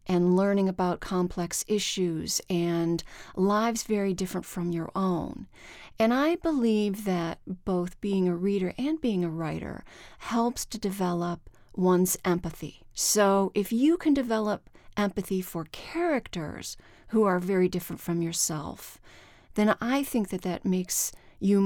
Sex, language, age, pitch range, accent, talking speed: female, English, 40-59, 175-205 Hz, American, 140 wpm